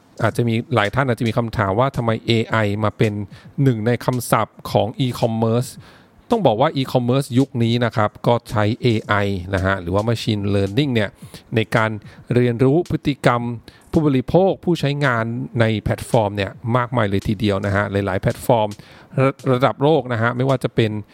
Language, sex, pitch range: English, male, 105-135 Hz